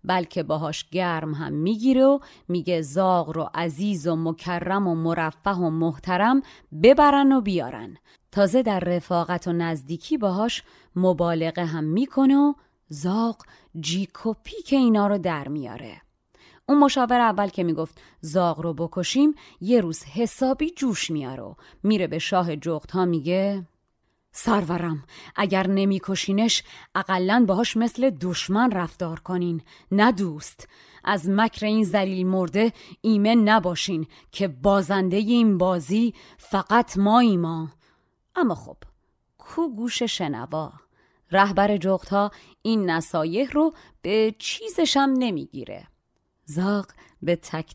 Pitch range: 170-220 Hz